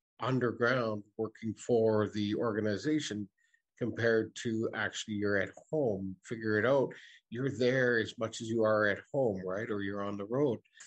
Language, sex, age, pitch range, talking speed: English, male, 50-69, 105-125 Hz, 160 wpm